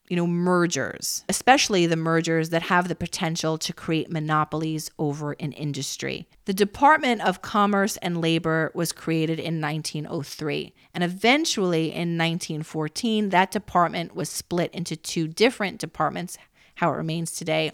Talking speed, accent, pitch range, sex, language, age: 140 wpm, American, 155-180 Hz, female, English, 30-49